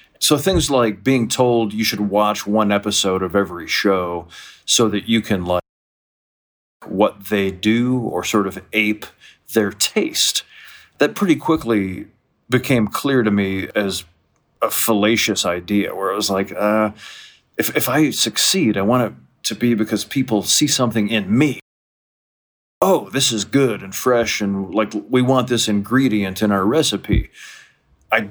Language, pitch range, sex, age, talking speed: English, 100-125 Hz, male, 40-59, 155 wpm